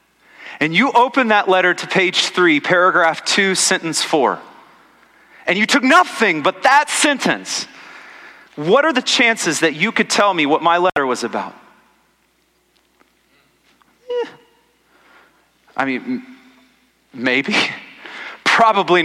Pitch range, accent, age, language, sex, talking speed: 155-220 Hz, American, 30-49, English, male, 115 wpm